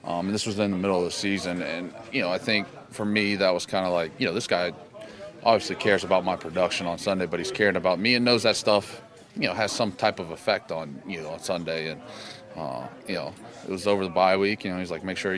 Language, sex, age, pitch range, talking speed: English, male, 30-49, 85-100 Hz, 275 wpm